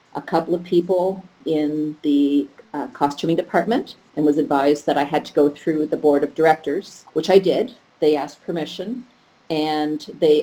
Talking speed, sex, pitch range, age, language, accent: 175 wpm, female, 145-170 Hz, 50-69, English, American